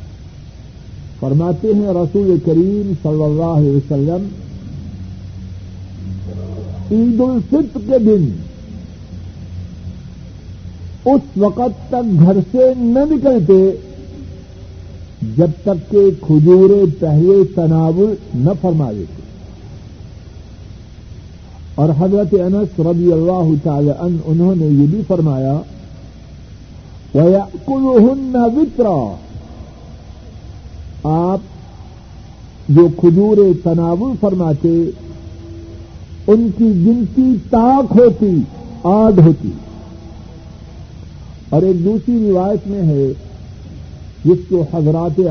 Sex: male